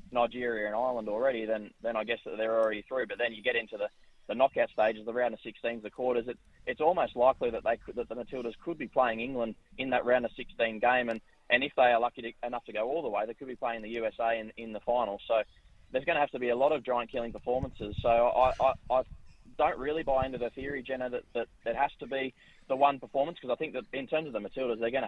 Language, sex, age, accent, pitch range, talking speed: English, male, 20-39, Australian, 115-130 Hz, 280 wpm